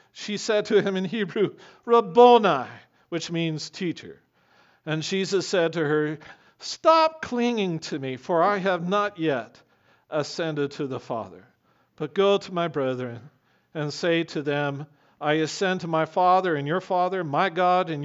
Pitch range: 130-165 Hz